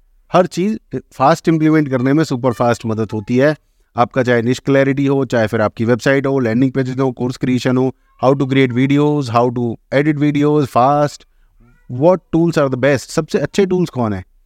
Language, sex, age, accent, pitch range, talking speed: English, male, 30-49, Indian, 120-150 Hz, 155 wpm